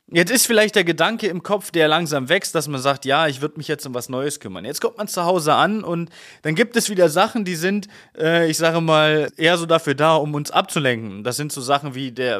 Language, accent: German, German